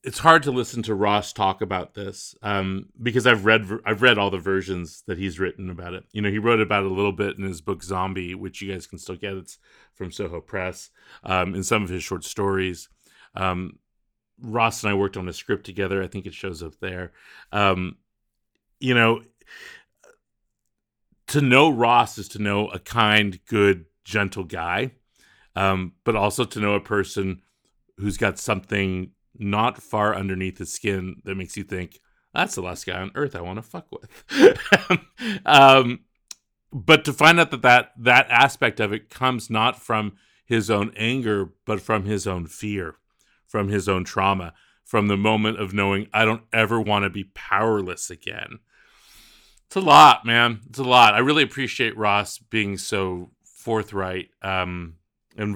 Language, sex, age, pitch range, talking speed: English, male, 40-59, 95-110 Hz, 180 wpm